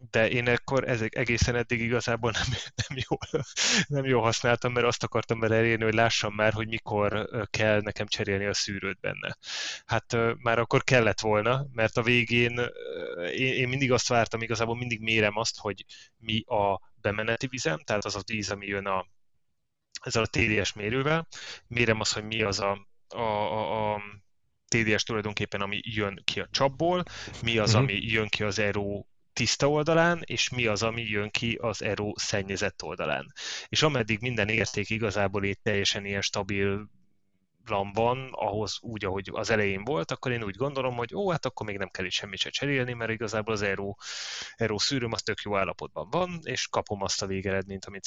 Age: 20-39